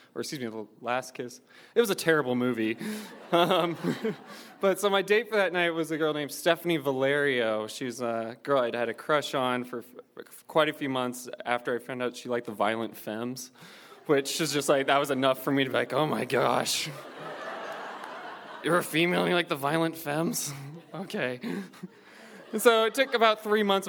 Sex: male